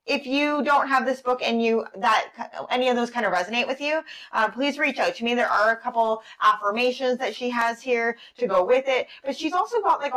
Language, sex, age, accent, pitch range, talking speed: English, female, 20-39, American, 200-265 Hz, 240 wpm